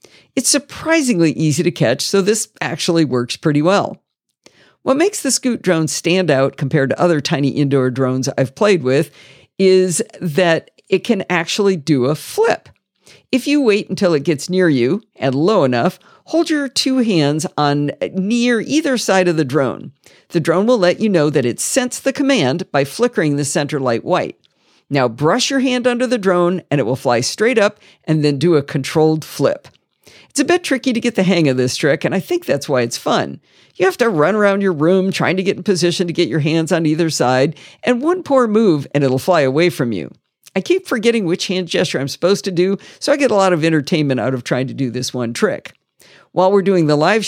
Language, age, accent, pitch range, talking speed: English, 50-69, American, 145-205 Hz, 215 wpm